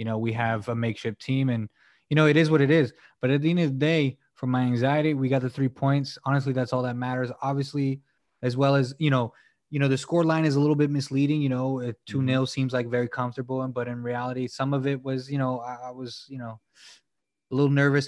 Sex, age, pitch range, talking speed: male, 20-39, 120-145 Hz, 245 wpm